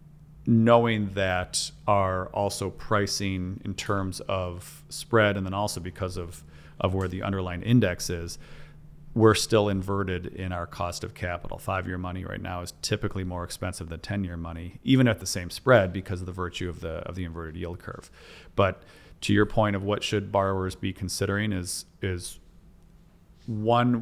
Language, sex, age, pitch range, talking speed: English, male, 40-59, 90-105 Hz, 170 wpm